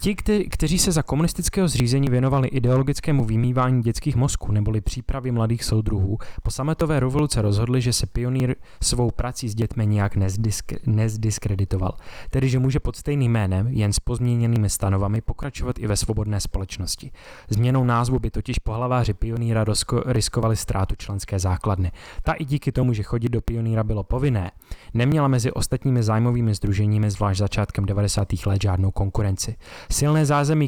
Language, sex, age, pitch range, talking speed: Czech, male, 20-39, 105-125 Hz, 155 wpm